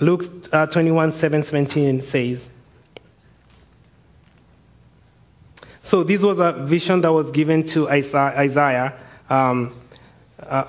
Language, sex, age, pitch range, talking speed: English, male, 30-49, 145-175 Hz, 105 wpm